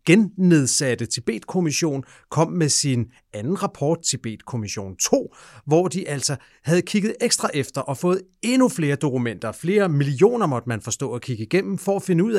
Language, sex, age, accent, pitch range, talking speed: Danish, male, 40-59, native, 125-175 Hz, 170 wpm